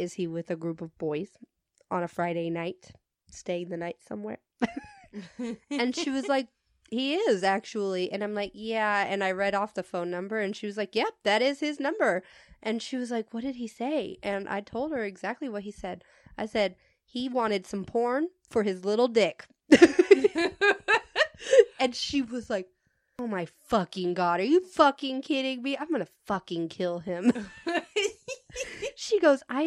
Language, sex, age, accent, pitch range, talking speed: English, female, 20-39, American, 195-280 Hz, 180 wpm